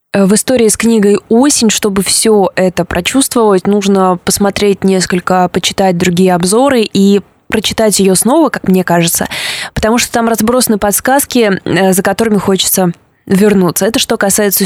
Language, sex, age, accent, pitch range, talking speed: Russian, female, 20-39, native, 190-230 Hz, 140 wpm